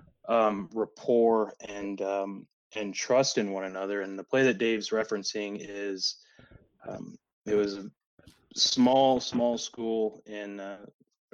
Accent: American